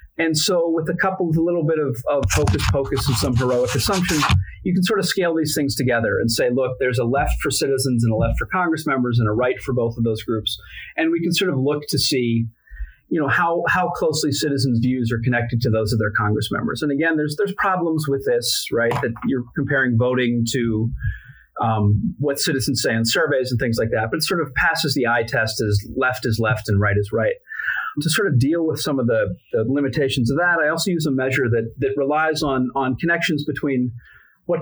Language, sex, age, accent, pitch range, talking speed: English, male, 30-49, American, 115-150 Hz, 230 wpm